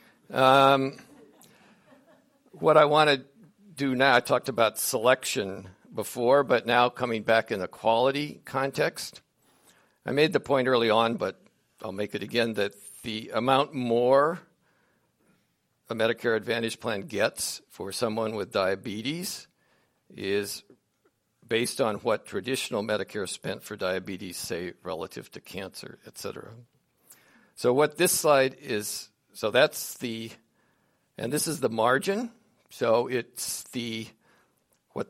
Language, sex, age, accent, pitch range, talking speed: English, male, 60-79, American, 110-140 Hz, 130 wpm